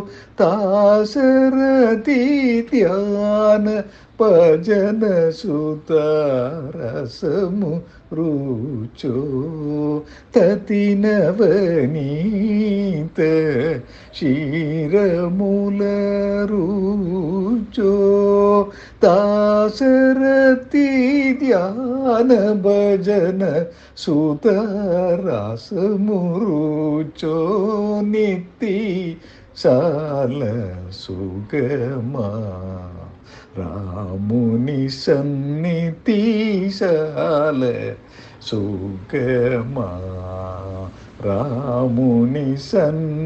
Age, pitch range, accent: 60-79, 125-205 Hz, native